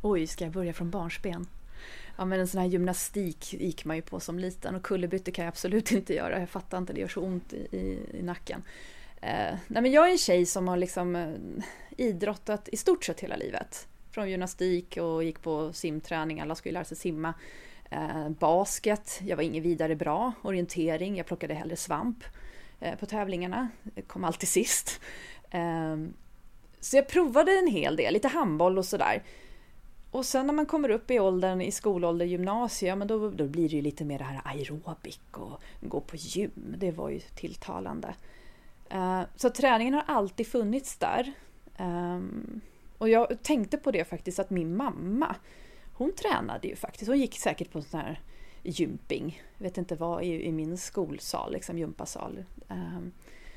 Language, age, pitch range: English, 30-49, 165-215 Hz